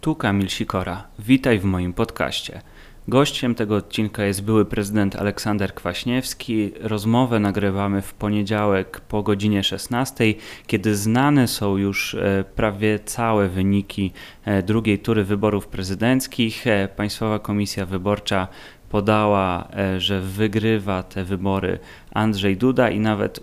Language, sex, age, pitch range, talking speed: Polish, male, 30-49, 95-110 Hz, 115 wpm